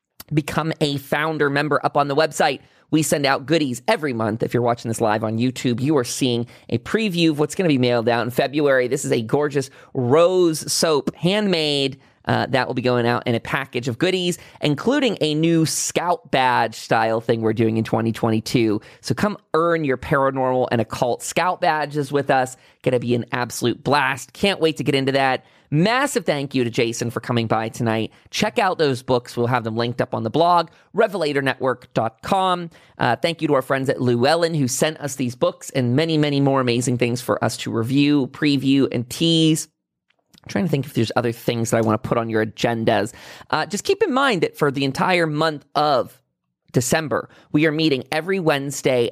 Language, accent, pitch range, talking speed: English, American, 120-160 Hz, 205 wpm